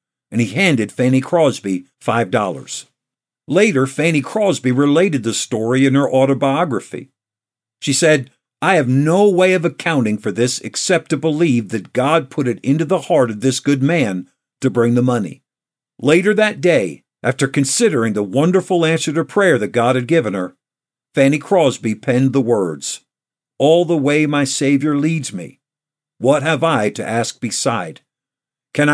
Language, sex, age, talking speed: English, male, 50-69, 160 wpm